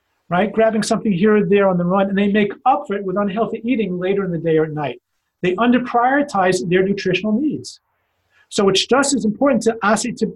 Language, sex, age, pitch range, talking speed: English, male, 40-59, 180-230 Hz, 220 wpm